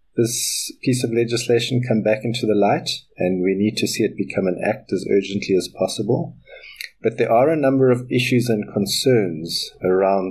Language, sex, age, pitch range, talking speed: English, male, 50-69, 100-125 Hz, 185 wpm